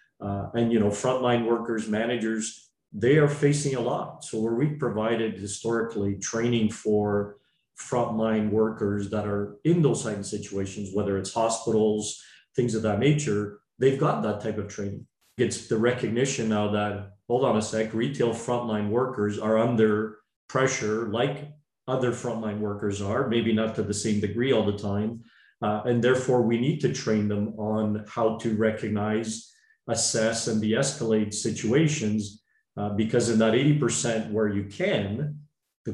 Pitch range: 105-120 Hz